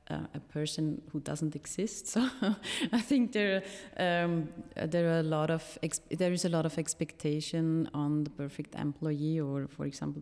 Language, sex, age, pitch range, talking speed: English, female, 30-49, 150-170 Hz, 170 wpm